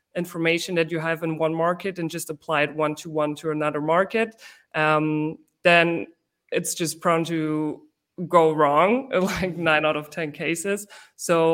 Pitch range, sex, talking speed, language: 155-175 Hz, female, 165 wpm, English